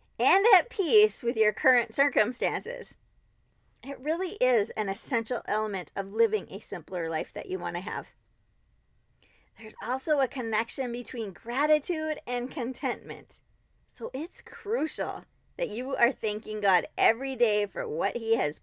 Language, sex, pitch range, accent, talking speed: English, female, 220-300 Hz, American, 140 wpm